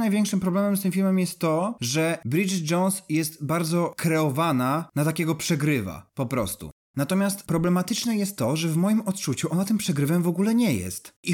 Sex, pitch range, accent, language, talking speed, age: male, 150-195 Hz, native, Polish, 180 wpm, 30-49